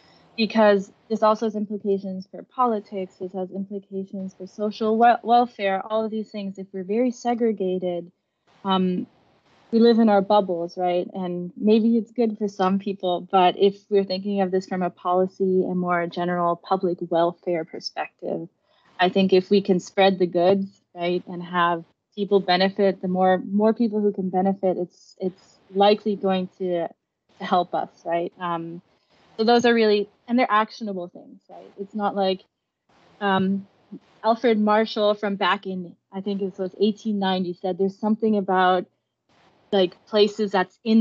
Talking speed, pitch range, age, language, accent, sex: 160 wpm, 185-210 Hz, 20-39, English, American, female